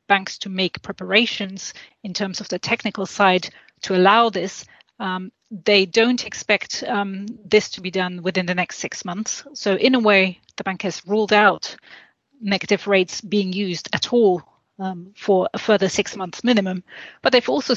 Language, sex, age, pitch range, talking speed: English, female, 30-49, 190-215 Hz, 175 wpm